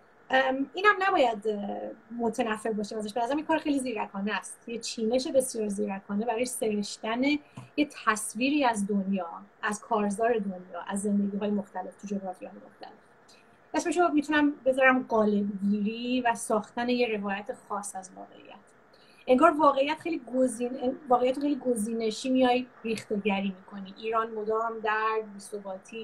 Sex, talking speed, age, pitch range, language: female, 140 wpm, 30-49, 215-255 Hz, Persian